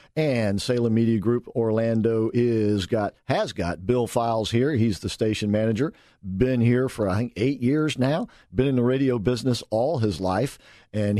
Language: English